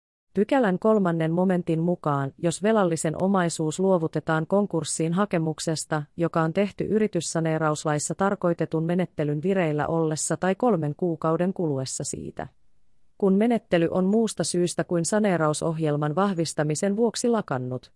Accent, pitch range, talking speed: native, 150-185 Hz, 110 wpm